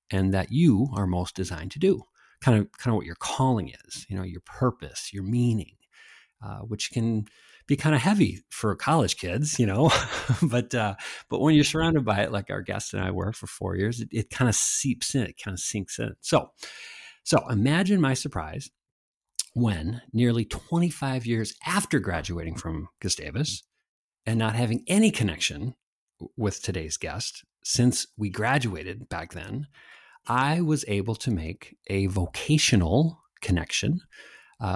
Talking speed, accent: 165 wpm, American